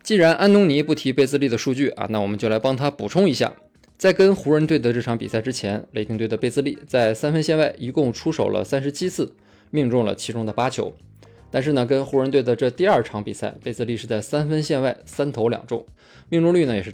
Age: 20-39